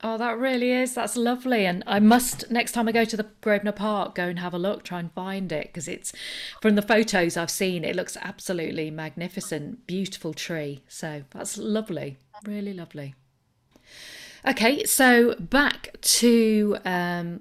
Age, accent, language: 40-59, British, English